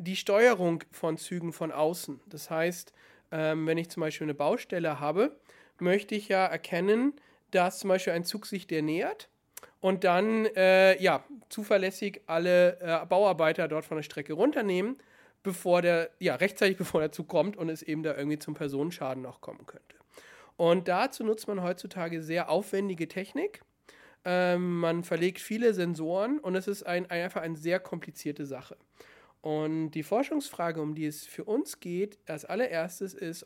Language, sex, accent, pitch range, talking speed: German, male, German, 155-190 Hz, 170 wpm